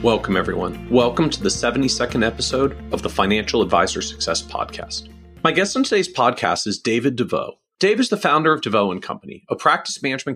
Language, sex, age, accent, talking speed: English, male, 40-59, American, 180 wpm